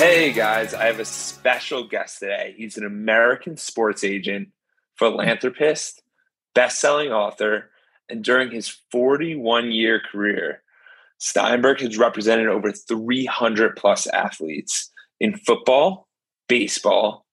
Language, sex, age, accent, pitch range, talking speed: English, male, 30-49, American, 105-130 Hz, 105 wpm